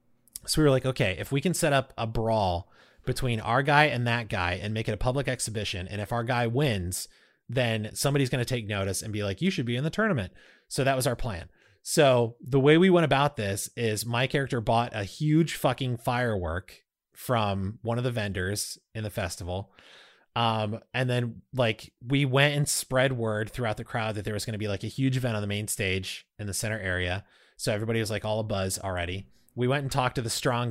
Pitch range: 105-135 Hz